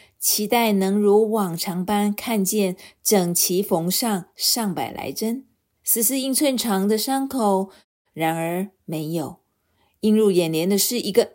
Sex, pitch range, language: female, 185-235 Hz, Chinese